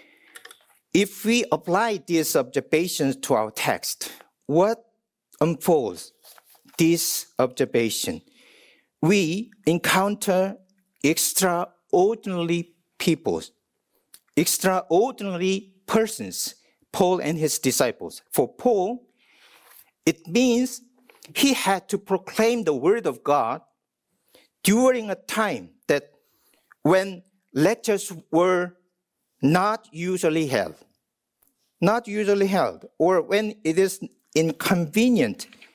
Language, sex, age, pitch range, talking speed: English, male, 50-69, 155-215 Hz, 85 wpm